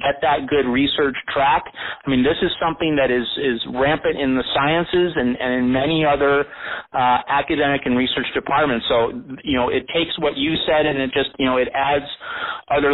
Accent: American